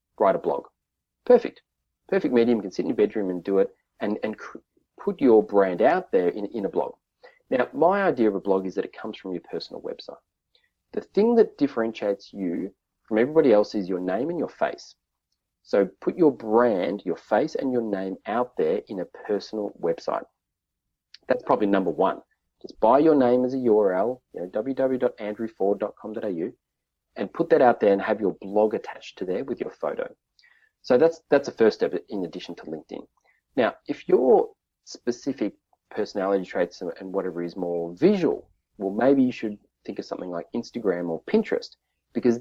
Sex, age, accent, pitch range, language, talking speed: male, 30-49, Australian, 95-150 Hz, English, 185 wpm